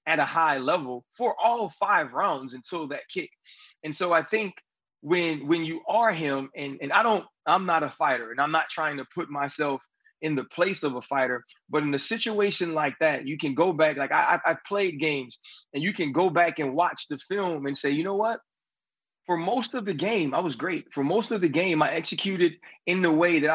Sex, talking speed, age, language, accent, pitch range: male, 225 wpm, 30-49, English, American, 150-190 Hz